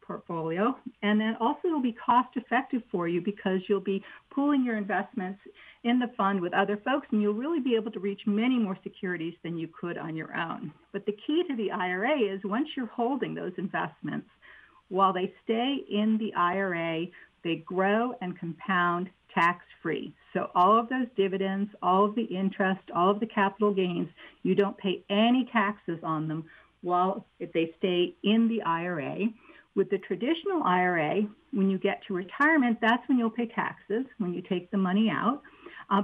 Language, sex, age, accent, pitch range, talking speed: English, female, 50-69, American, 180-230 Hz, 185 wpm